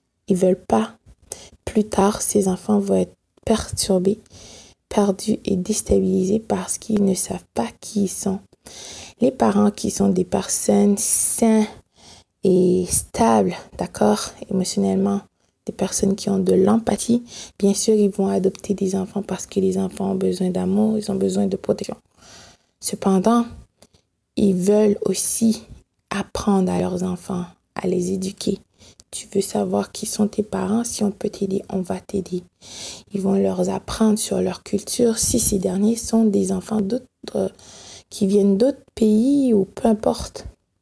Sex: female